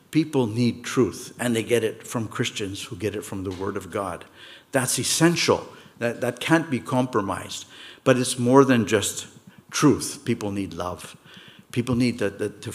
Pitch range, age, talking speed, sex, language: 105-130 Hz, 60-79, 175 wpm, male, English